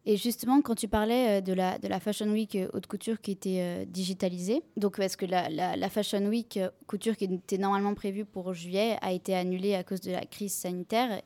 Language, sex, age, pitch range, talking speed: French, female, 20-39, 190-225 Hz, 215 wpm